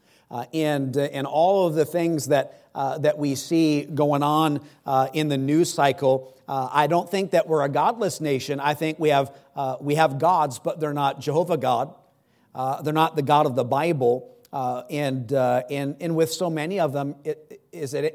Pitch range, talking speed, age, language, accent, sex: 130-155 Hz, 205 wpm, 50-69, English, American, male